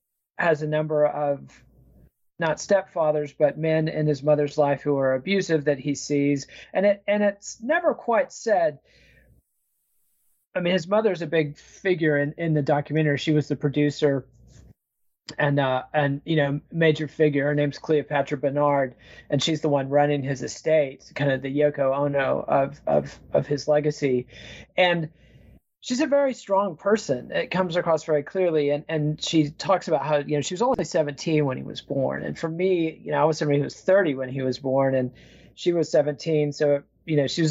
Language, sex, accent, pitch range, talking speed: English, male, American, 140-160 Hz, 190 wpm